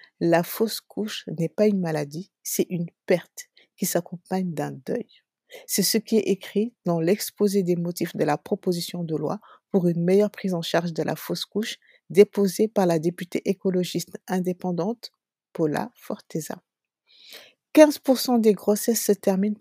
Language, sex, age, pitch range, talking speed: French, female, 50-69, 170-210 Hz, 155 wpm